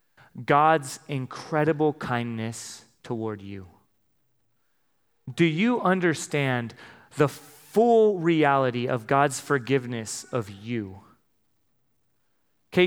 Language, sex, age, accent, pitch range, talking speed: English, male, 30-49, American, 130-175 Hz, 80 wpm